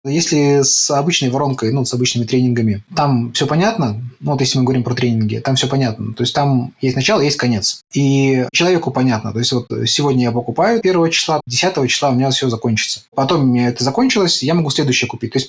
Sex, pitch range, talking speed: male, 125-150 Hz, 215 wpm